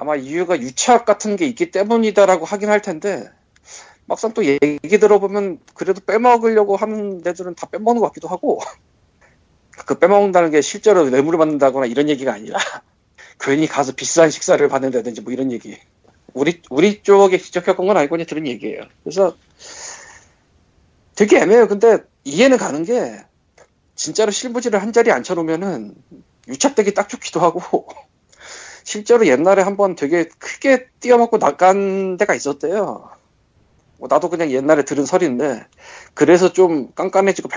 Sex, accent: male, native